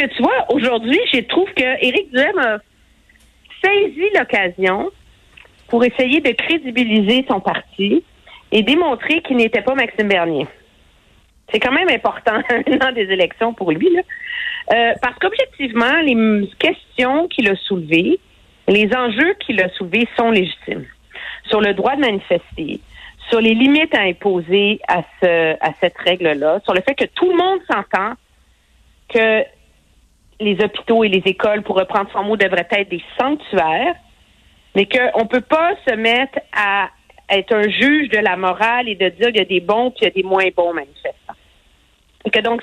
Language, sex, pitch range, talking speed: French, female, 180-260 Hz, 165 wpm